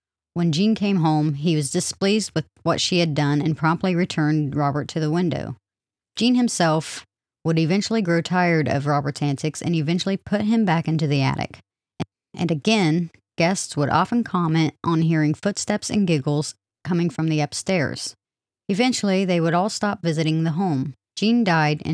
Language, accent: English, American